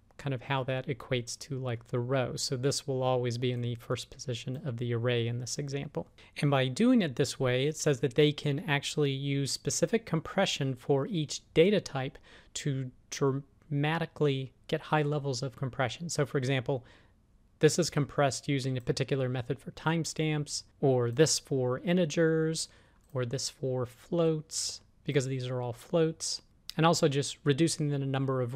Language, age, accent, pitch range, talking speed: English, 40-59, American, 125-145 Hz, 170 wpm